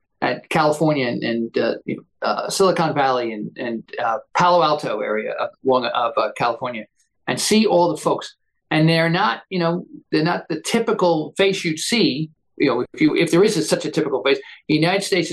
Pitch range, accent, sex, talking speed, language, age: 145-195 Hz, American, male, 195 wpm, English, 50-69